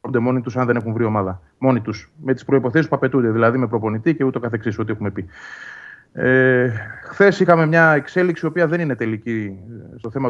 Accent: native